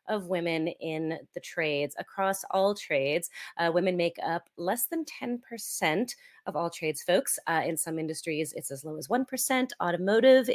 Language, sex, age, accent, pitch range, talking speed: English, female, 30-49, American, 170-220 Hz, 175 wpm